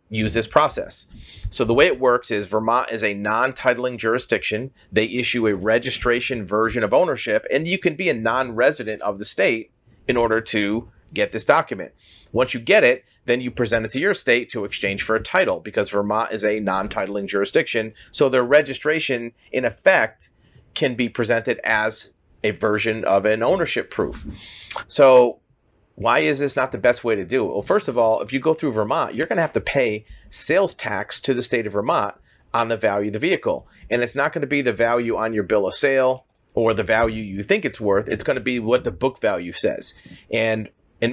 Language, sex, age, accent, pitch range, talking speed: English, male, 40-59, American, 110-125 Hz, 210 wpm